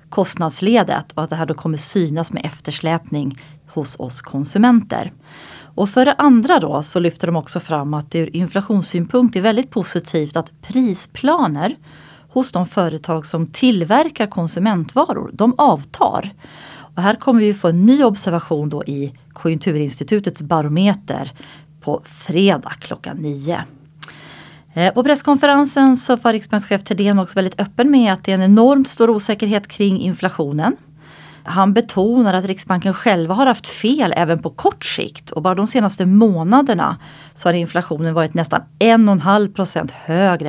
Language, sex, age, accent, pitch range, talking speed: Swedish, female, 30-49, native, 155-210 Hz, 145 wpm